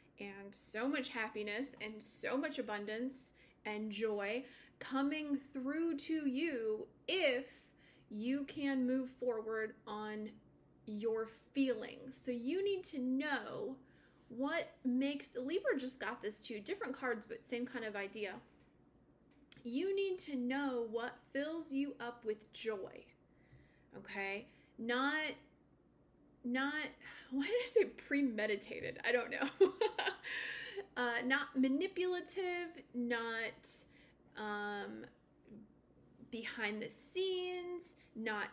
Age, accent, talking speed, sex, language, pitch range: 30-49, American, 110 wpm, female, English, 230-320 Hz